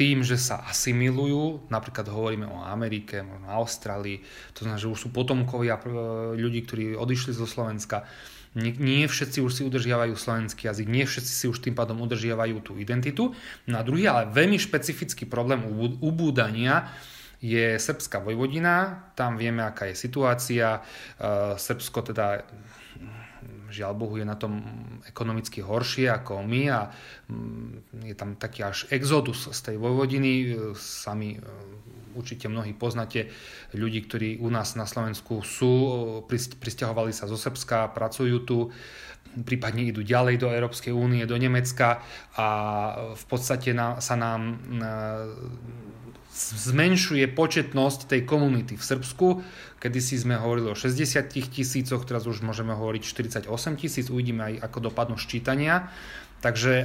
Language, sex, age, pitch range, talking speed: Slovak, male, 30-49, 110-130 Hz, 135 wpm